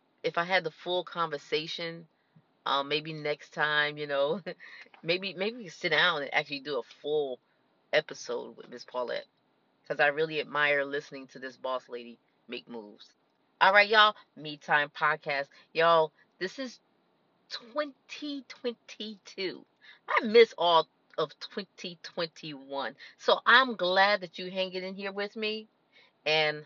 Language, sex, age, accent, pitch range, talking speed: English, female, 30-49, American, 145-200 Hz, 145 wpm